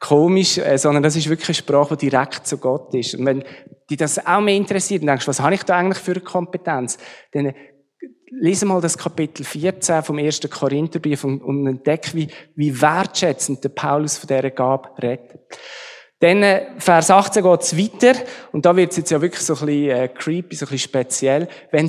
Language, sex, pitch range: German, male, 140-180 Hz